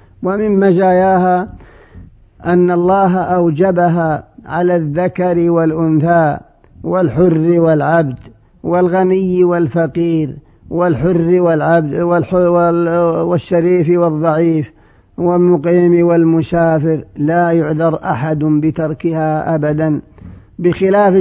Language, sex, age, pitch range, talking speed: Arabic, male, 50-69, 155-180 Hz, 70 wpm